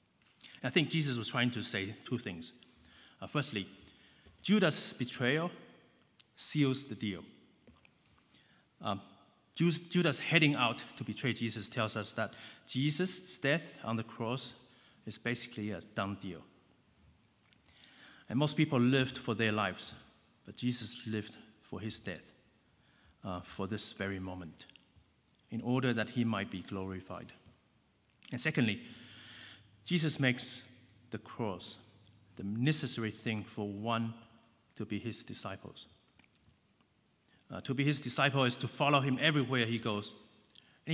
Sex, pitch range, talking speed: male, 105-135 Hz, 130 wpm